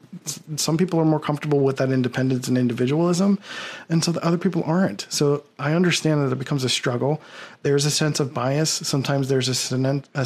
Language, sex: English, male